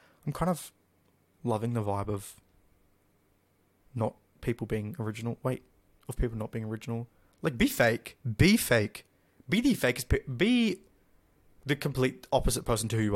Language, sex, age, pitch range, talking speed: English, male, 20-39, 100-135 Hz, 155 wpm